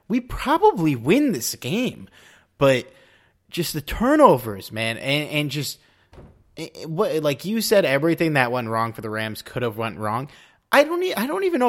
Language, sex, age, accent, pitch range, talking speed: English, male, 30-49, American, 115-170 Hz, 165 wpm